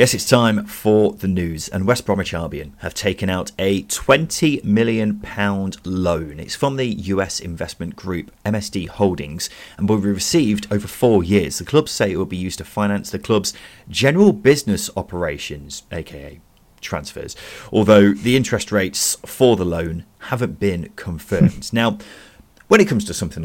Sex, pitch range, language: male, 80-105 Hz, English